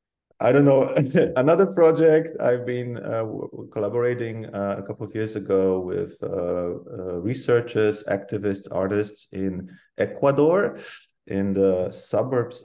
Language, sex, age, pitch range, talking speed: English, male, 30-49, 95-115 Hz, 130 wpm